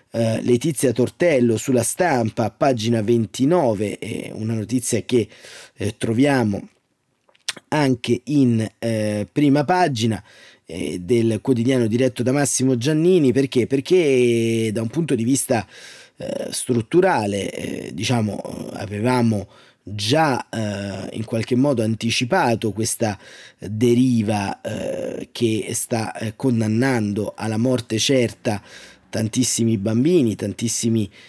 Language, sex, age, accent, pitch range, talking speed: Italian, male, 30-49, native, 110-135 Hz, 90 wpm